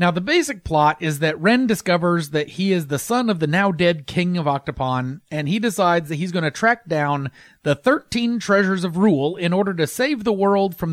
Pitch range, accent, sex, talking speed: 145-190 Hz, American, male, 220 wpm